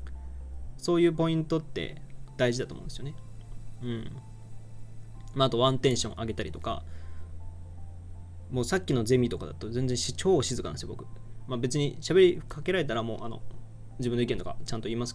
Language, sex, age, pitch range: Japanese, male, 20-39, 110-135 Hz